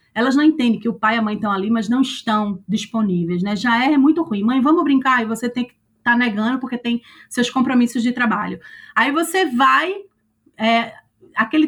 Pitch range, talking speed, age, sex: 215-280 Hz, 200 wpm, 20-39, female